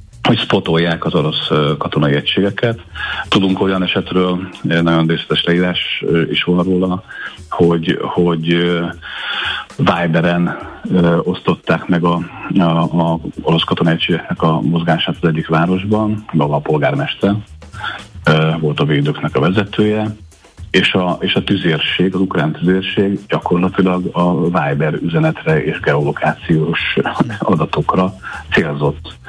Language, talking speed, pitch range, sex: Hungarian, 110 wpm, 80-95 Hz, male